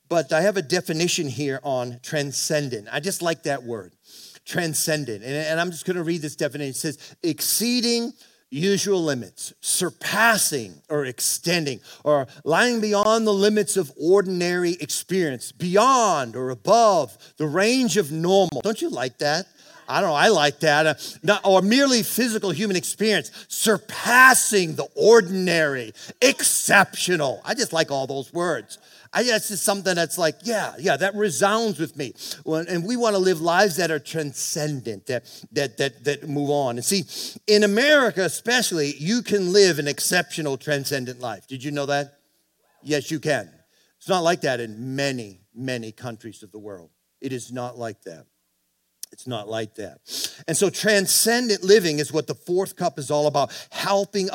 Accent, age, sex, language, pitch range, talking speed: American, 40-59, male, English, 140-200 Hz, 165 wpm